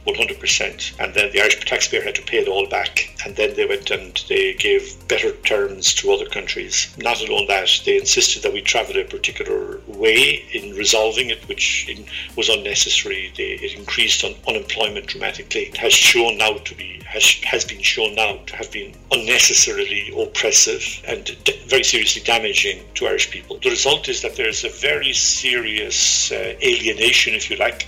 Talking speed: 185 wpm